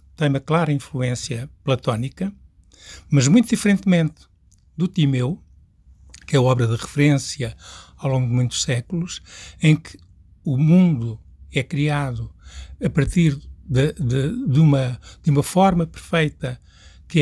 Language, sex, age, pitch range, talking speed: Portuguese, male, 60-79, 120-160 Hz, 130 wpm